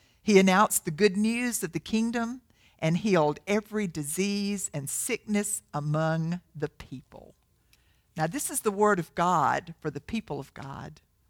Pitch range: 160-230 Hz